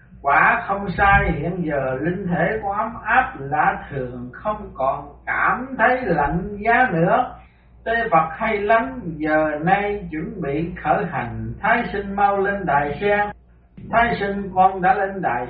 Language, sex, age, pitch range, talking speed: Vietnamese, male, 60-79, 145-205 Hz, 155 wpm